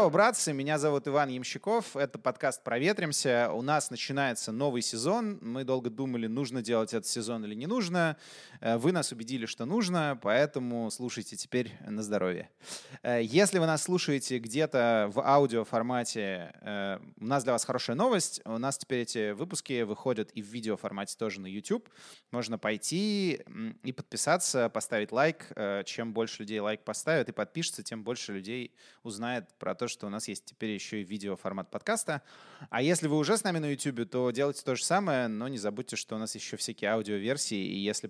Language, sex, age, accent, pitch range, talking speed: Russian, male, 20-39, native, 110-140 Hz, 180 wpm